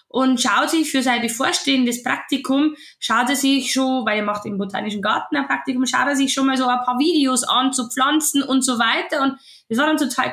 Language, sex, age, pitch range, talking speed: German, female, 10-29, 240-315 Hz, 225 wpm